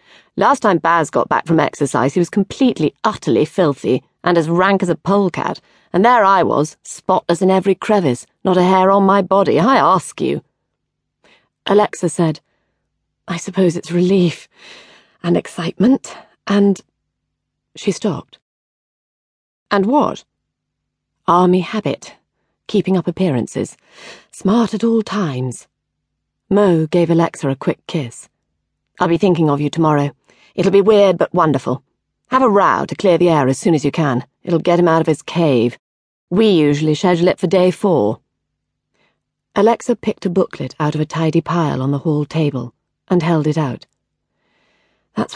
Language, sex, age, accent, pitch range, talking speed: English, female, 40-59, British, 145-190 Hz, 155 wpm